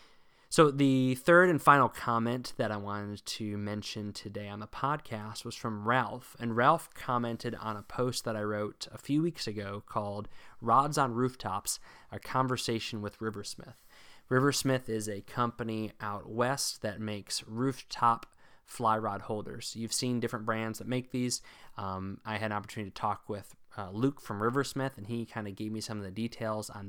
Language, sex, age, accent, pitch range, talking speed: English, male, 20-39, American, 105-120 Hz, 180 wpm